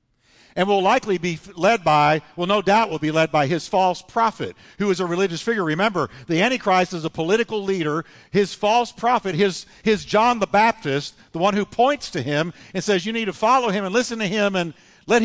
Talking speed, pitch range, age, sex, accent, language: 215 wpm, 145-210 Hz, 50-69, male, American, English